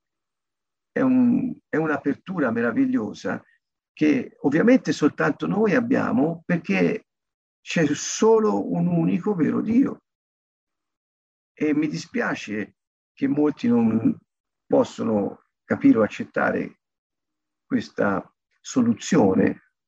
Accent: native